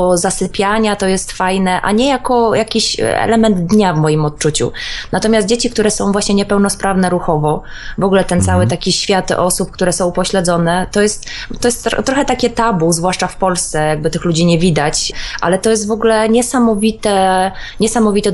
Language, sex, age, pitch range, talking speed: Polish, female, 20-39, 170-210 Hz, 170 wpm